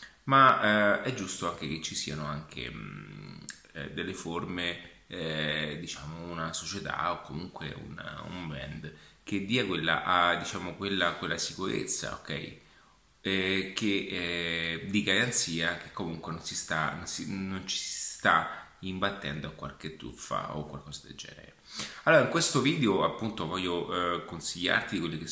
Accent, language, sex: native, Italian, male